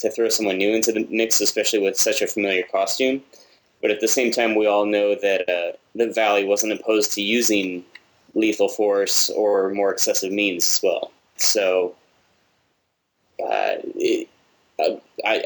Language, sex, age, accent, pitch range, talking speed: English, male, 20-39, American, 100-125 Hz, 155 wpm